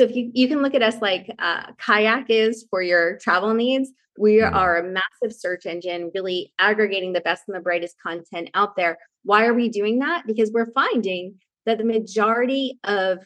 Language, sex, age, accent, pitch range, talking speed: English, female, 20-39, American, 180-230 Hz, 200 wpm